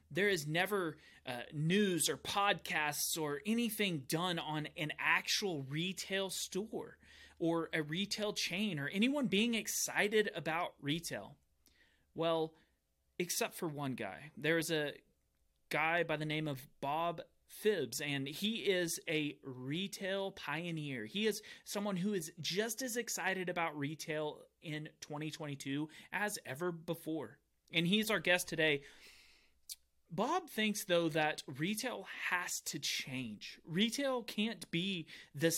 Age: 30-49